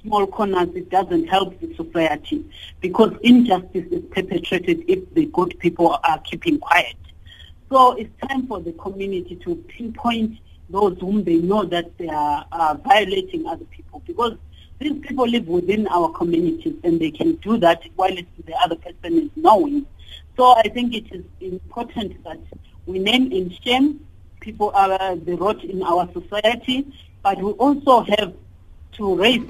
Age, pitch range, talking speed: 50-69, 175-295 Hz, 165 wpm